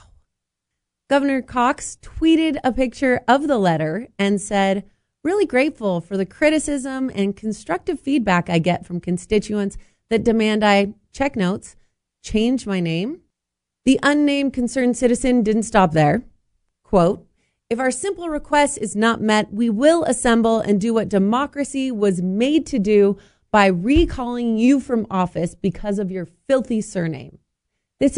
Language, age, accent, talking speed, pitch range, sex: English, 30-49, American, 145 wpm, 195-265 Hz, female